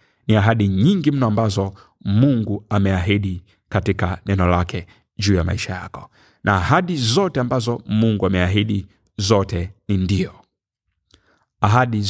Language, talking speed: Swahili, 120 wpm